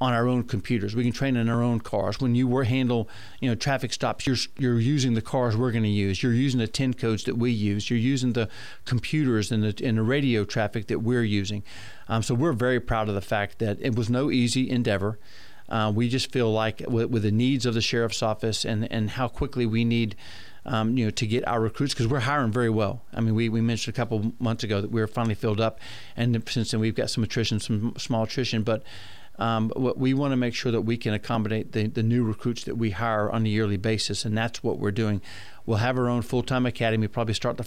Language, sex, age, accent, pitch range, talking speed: English, male, 40-59, American, 110-125 Hz, 250 wpm